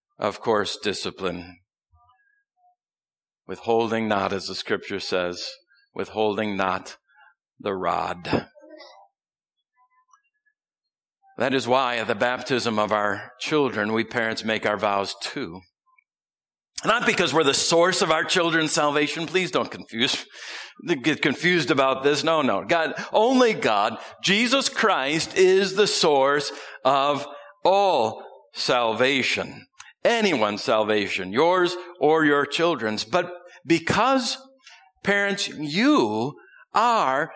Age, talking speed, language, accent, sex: 50-69, 110 wpm, English, American, male